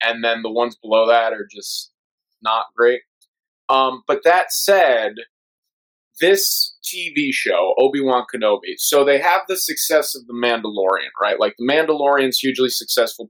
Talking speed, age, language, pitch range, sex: 155 wpm, 30-49, English, 115-190 Hz, male